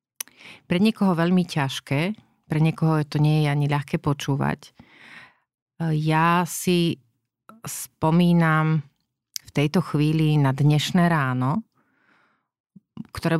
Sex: female